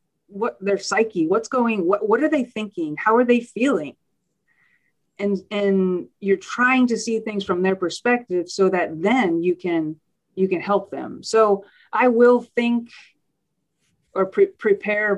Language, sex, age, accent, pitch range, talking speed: English, female, 30-49, American, 165-215 Hz, 155 wpm